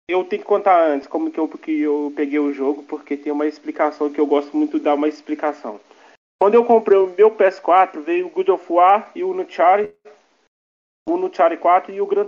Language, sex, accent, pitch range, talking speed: Portuguese, male, Brazilian, 150-230 Hz, 225 wpm